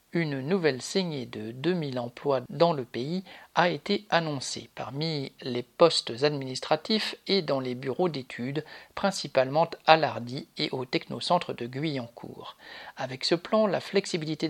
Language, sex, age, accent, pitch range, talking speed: French, male, 50-69, French, 135-175 Hz, 140 wpm